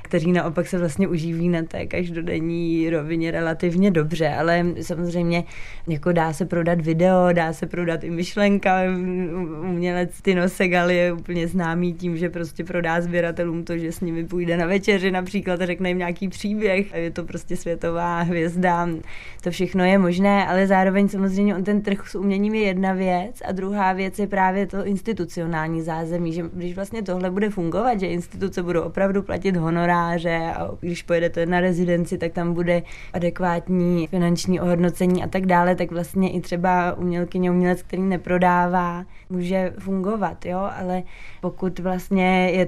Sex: female